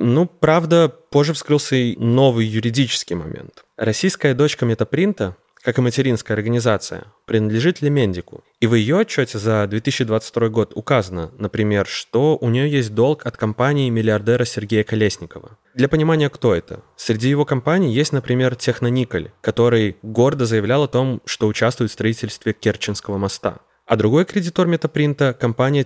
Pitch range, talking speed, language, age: 110-140 Hz, 145 wpm, Russian, 20-39